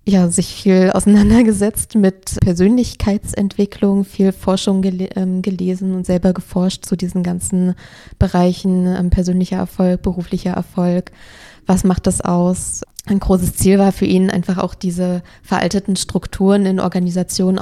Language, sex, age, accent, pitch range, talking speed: German, female, 20-39, German, 180-195 Hz, 135 wpm